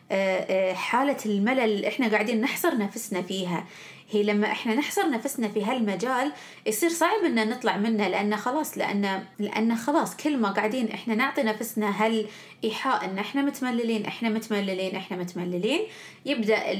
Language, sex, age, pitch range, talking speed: Arabic, female, 20-39, 205-265 Hz, 140 wpm